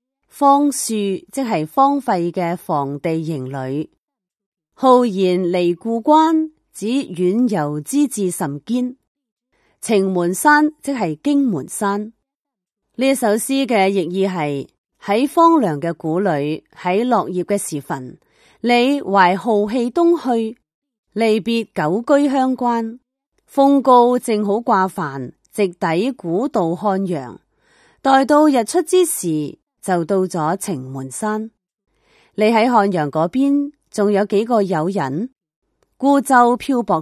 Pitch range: 175-255 Hz